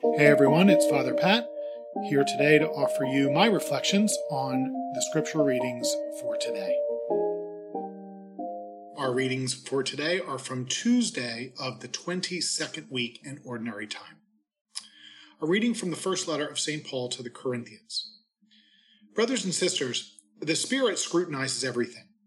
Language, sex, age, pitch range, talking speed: English, male, 40-59, 125-195 Hz, 135 wpm